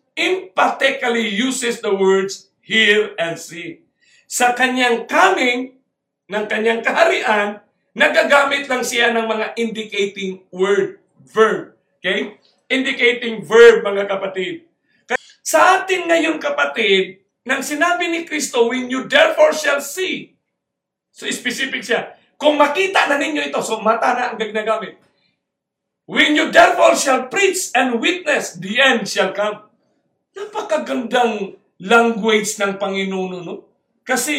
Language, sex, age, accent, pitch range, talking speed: English, male, 50-69, Filipino, 200-270 Hz, 120 wpm